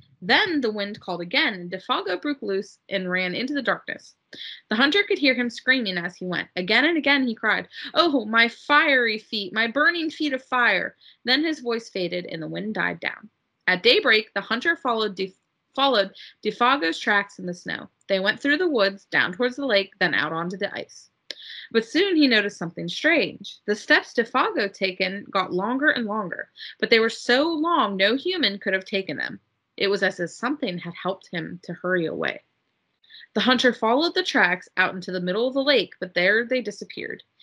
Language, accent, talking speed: English, American, 200 wpm